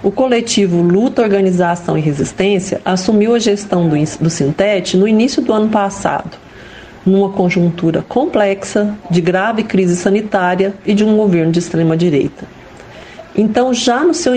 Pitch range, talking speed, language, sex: 175-220 Hz, 140 wpm, Portuguese, female